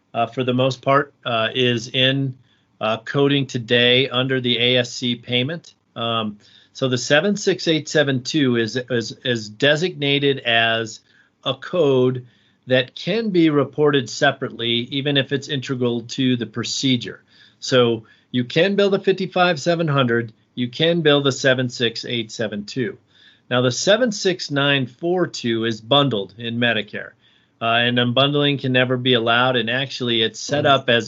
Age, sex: 40-59, male